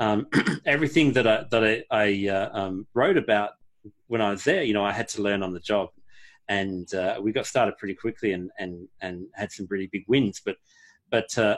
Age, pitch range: 40-59, 100-125 Hz